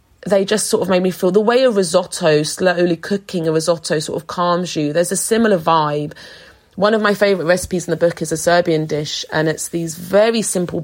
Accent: British